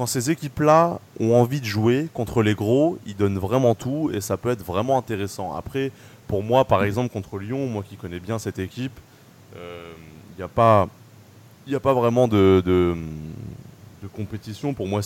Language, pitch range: French, 95-120 Hz